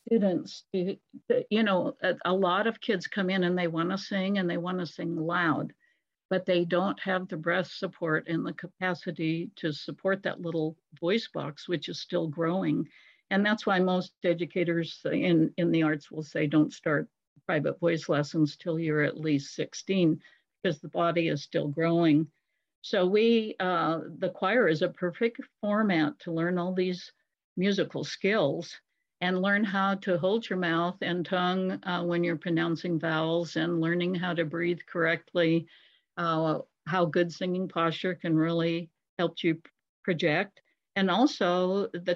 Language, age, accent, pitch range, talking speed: English, 60-79, American, 165-190 Hz, 160 wpm